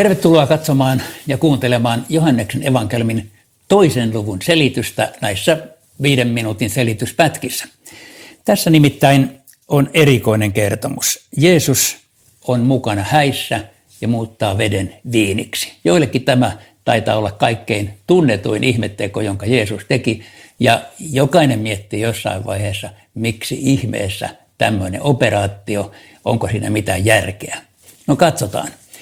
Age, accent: 60-79, native